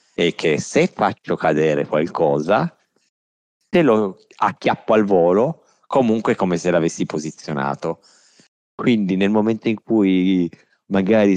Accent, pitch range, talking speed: native, 75-100 Hz, 115 wpm